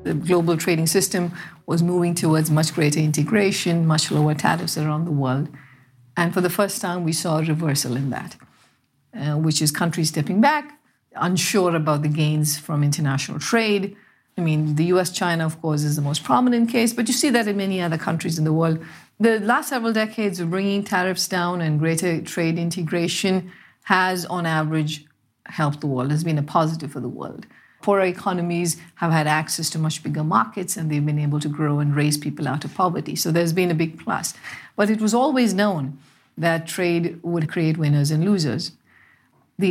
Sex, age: female, 50-69